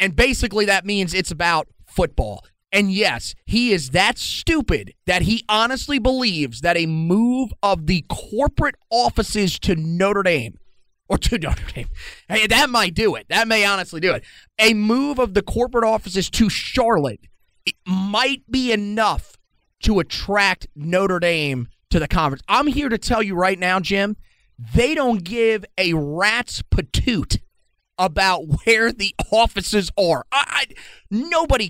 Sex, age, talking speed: male, 30-49, 155 wpm